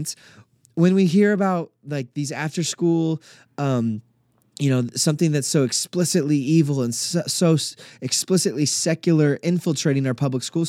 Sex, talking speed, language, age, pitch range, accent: male, 135 wpm, English, 20-39, 135-175 Hz, American